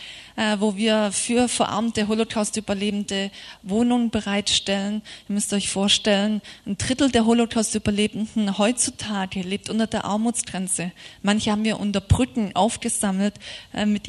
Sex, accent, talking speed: female, German, 115 wpm